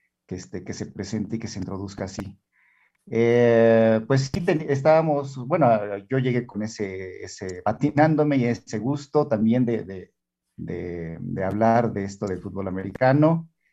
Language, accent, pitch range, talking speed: Spanish, Mexican, 110-150 Hz, 140 wpm